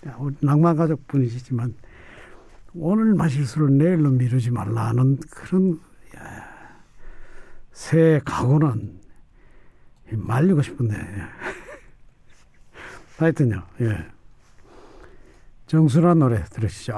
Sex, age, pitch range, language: male, 60-79, 115-170 Hz, Korean